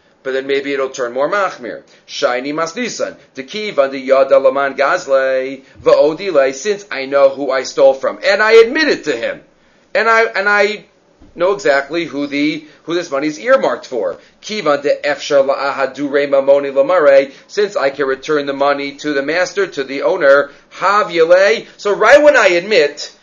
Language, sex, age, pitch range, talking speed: English, male, 40-59, 140-225 Hz, 165 wpm